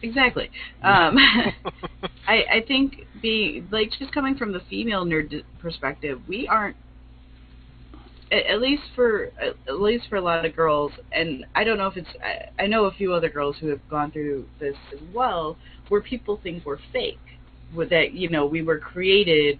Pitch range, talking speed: 145-200 Hz, 185 wpm